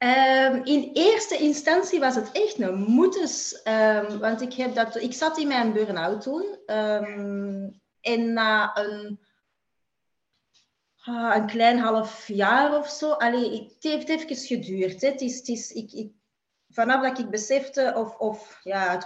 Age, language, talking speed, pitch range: 30-49, Dutch, 160 wpm, 205-260 Hz